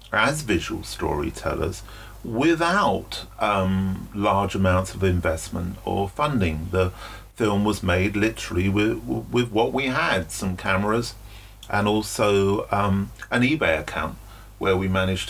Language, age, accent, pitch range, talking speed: English, 40-59, British, 95-120 Hz, 125 wpm